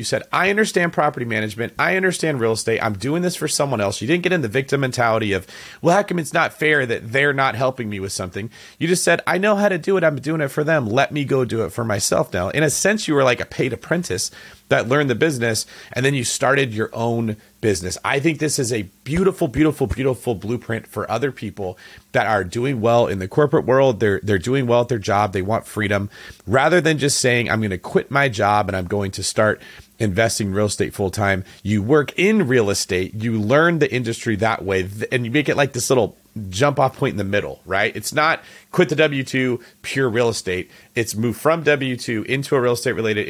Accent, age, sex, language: American, 30-49, male, English